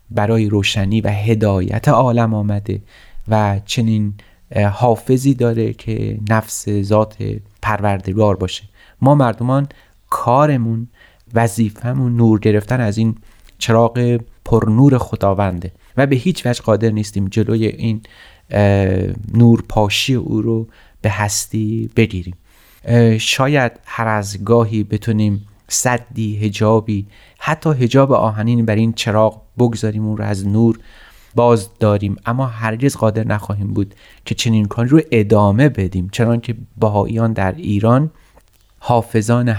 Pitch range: 100-115 Hz